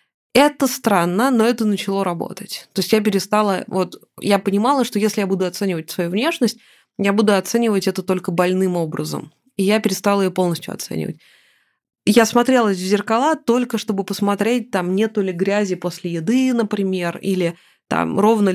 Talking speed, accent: 160 wpm, native